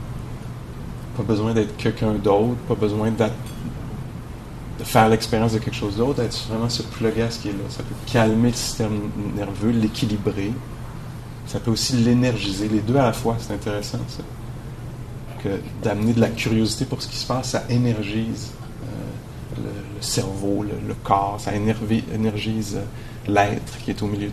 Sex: male